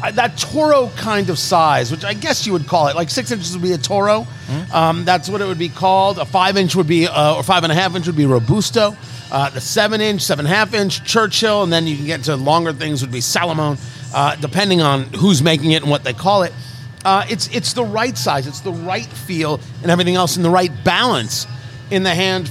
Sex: male